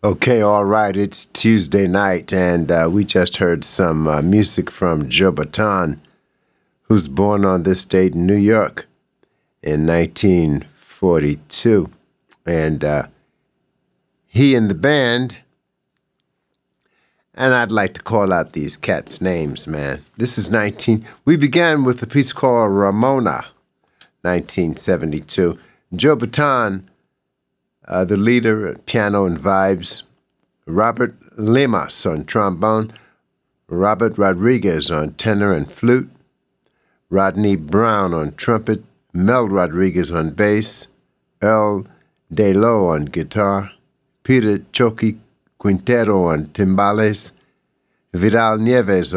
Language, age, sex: English, 60-79, male